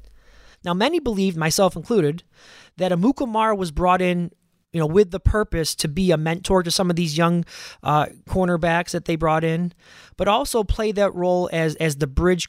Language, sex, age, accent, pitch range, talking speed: English, male, 20-39, American, 155-195 Hz, 185 wpm